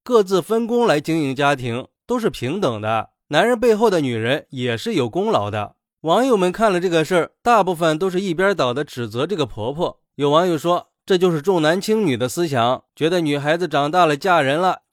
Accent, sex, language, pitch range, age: native, male, Chinese, 140-190 Hz, 20-39